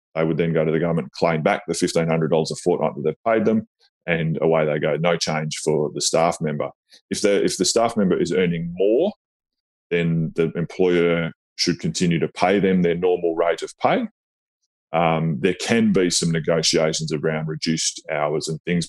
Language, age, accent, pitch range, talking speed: English, 20-39, Australian, 80-95 Hz, 195 wpm